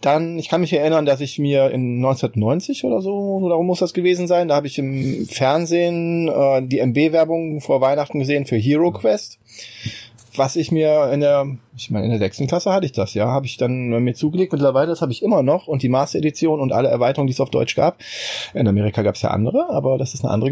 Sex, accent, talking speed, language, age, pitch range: male, German, 235 wpm, German, 20-39, 125-160 Hz